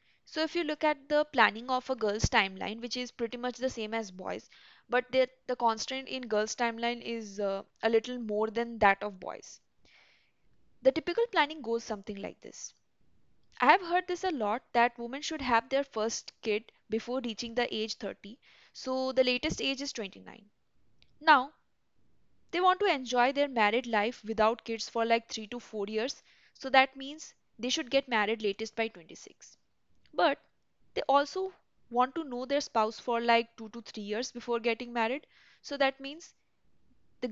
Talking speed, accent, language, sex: 180 wpm, Indian, English, female